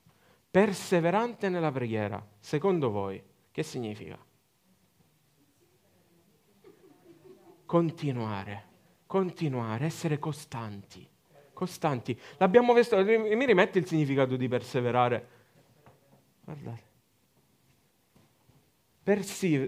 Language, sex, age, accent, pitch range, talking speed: Italian, male, 40-59, native, 130-210 Hz, 65 wpm